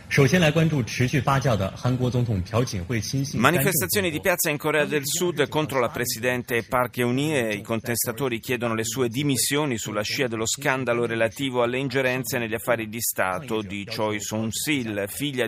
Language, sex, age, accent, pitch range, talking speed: Italian, male, 30-49, native, 110-135 Hz, 130 wpm